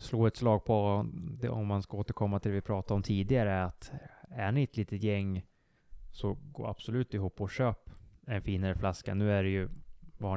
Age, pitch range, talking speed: 20-39, 95-110 Hz, 210 wpm